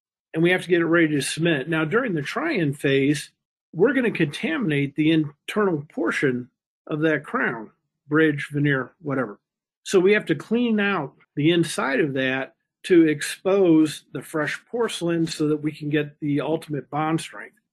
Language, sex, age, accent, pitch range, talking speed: English, male, 50-69, American, 145-165 Hz, 170 wpm